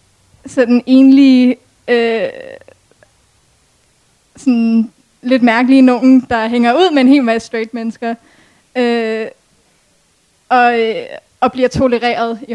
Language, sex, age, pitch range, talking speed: Danish, female, 20-39, 220-255 Hz, 110 wpm